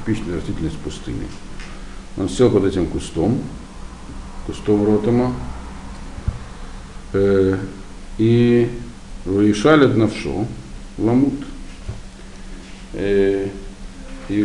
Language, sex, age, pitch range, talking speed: Russian, male, 60-79, 95-120 Hz, 70 wpm